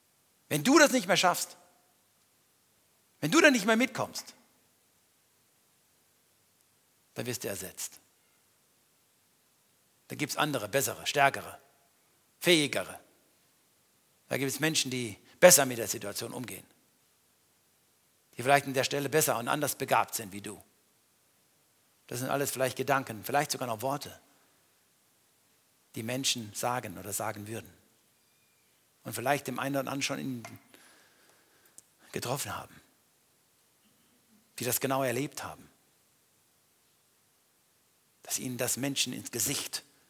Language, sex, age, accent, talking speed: German, male, 60-79, German, 120 wpm